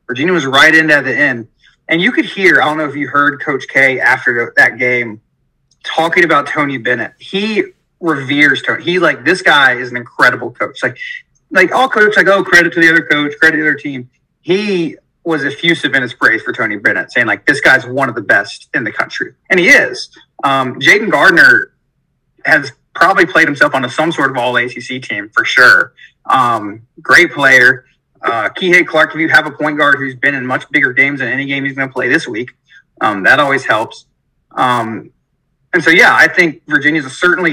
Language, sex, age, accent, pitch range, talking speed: English, male, 30-49, American, 135-165 Hz, 215 wpm